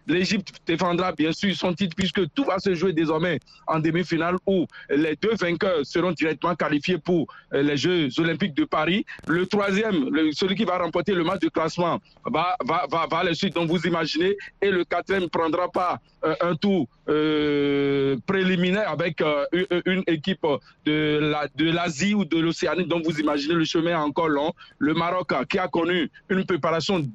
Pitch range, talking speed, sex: 165-190 Hz, 180 wpm, male